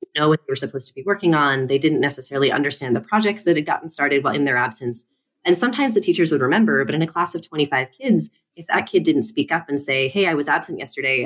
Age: 20-39